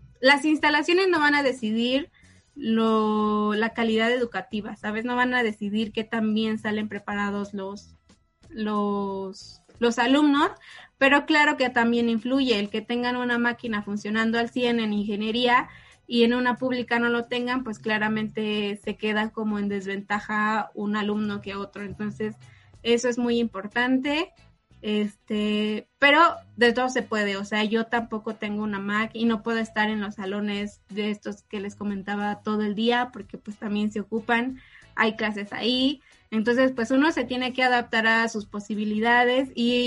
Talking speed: 165 wpm